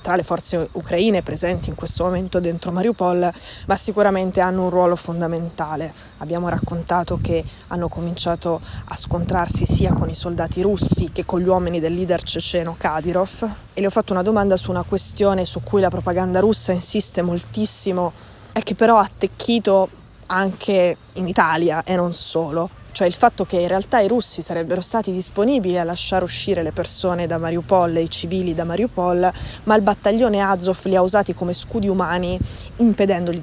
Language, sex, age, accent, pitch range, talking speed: Italian, female, 20-39, native, 175-195 Hz, 175 wpm